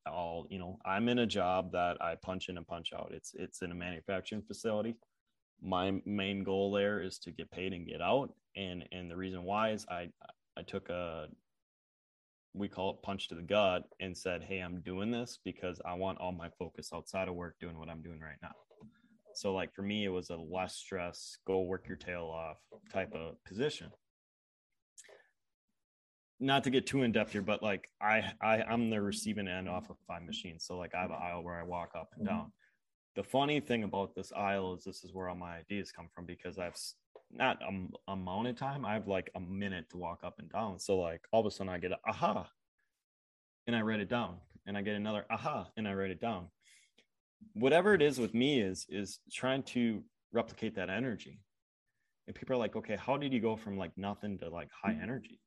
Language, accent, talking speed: English, American, 220 wpm